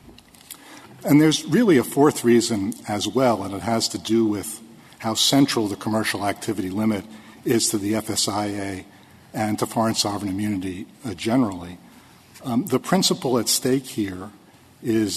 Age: 50-69